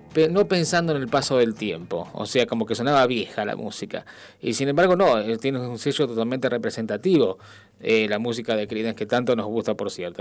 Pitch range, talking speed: 115-140 Hz, 205 wpm